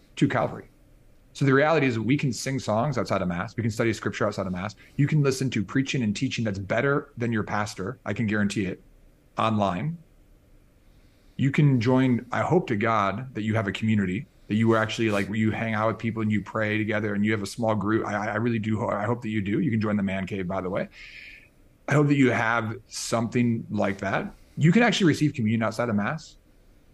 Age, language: 30-49, English